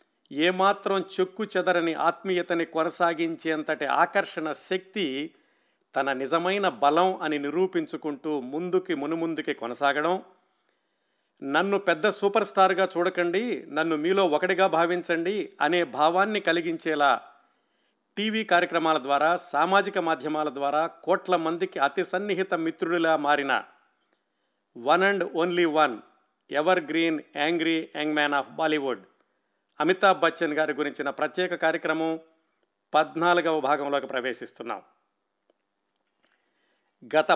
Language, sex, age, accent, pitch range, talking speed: Telugu, male, 50-69, native, 160-190 Hz, 95 wpm